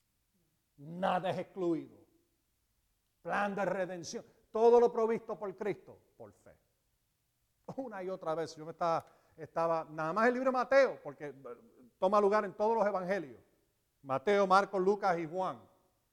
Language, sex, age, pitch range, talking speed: Spanish, male, 50-69, 160-250 Hz, 150 wpm